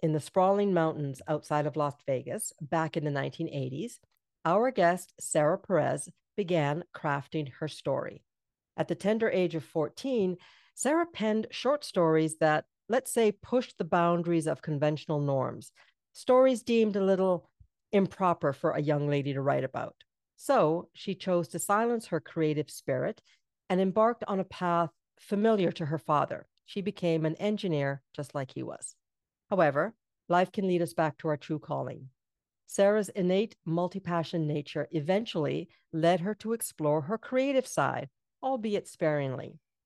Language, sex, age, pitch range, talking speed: English, female, 50-69, 155-205 Hz, 150 wpm